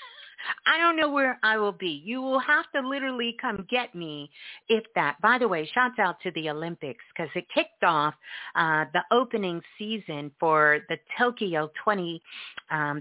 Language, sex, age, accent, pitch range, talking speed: English, female, 40-59, American, 155-230 Hz, 175 wpm